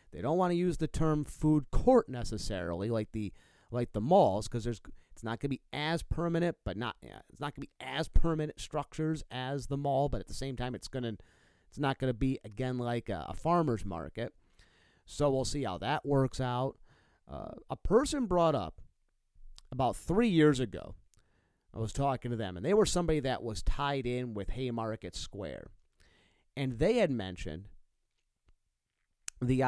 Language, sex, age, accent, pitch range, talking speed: English, male, 30-49, American, 105-145 Hz, 190 wpm